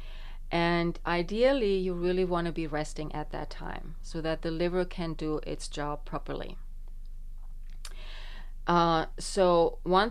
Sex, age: female, 30-49